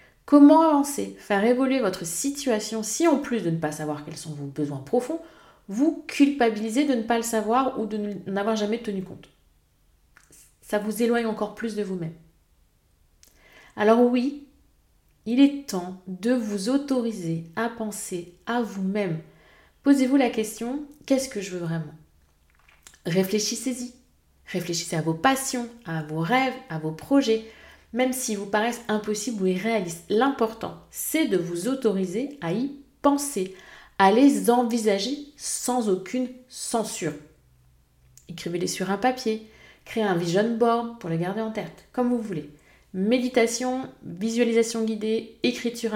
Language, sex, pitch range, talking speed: French, female, 180-245 Hz, 145 wpm